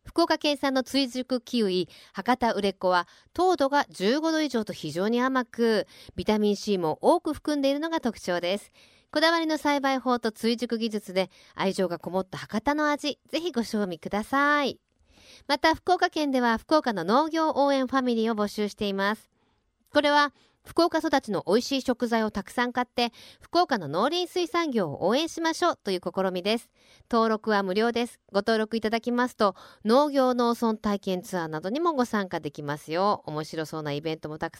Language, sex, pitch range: Japanese, female, 180-270 Hz